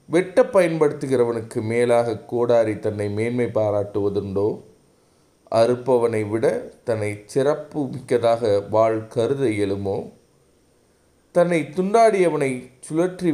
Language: Tamil